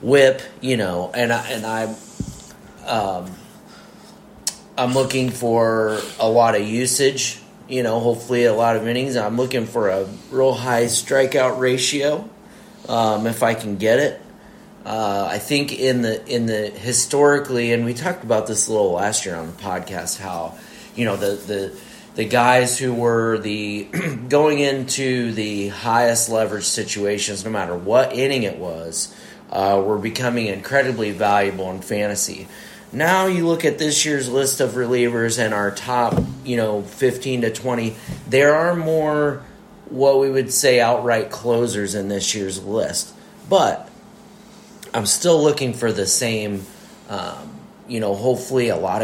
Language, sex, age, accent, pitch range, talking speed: English, male, 30-49, American, 110-135 Hz, 160 wpm